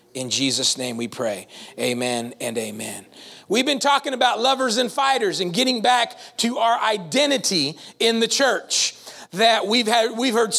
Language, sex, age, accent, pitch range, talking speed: English, male, 40-59, American, 215-275 Hz, 165 wpm